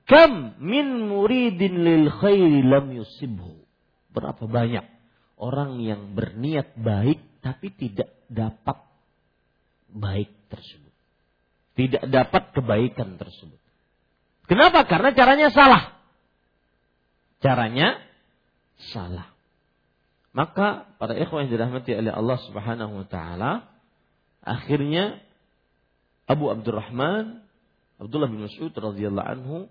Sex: male